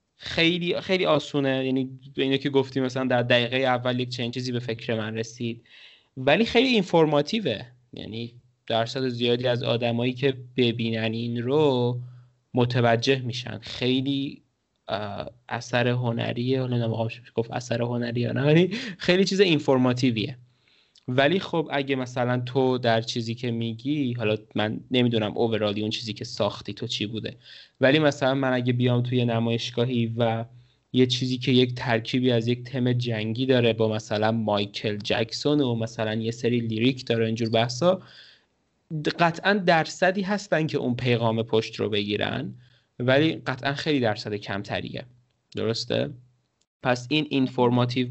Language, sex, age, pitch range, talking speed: Persian, male, 20-39, 115-135 Hz, 140 wpm